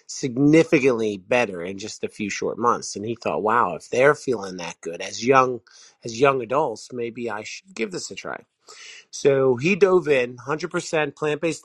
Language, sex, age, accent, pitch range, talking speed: English, male, 30-49, American, 115-150 Hz, 180 wpm